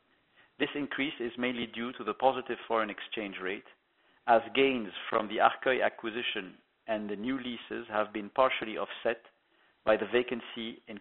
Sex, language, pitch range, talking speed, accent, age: male, English, 105-120 Hz, 160 wpm, French, 50-69